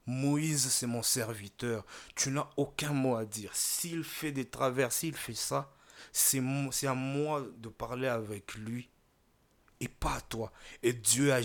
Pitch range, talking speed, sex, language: 110-135 Hz, 160 wpm, male, French